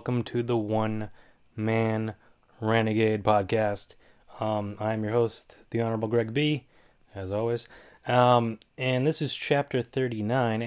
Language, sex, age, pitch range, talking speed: English, male, 20-39, 110-135 Hz, 130 wpm